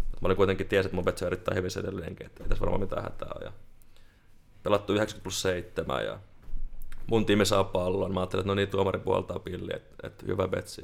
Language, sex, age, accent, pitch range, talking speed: Finnish, male, 20-39, native, 90-100 Hz, 195 wpm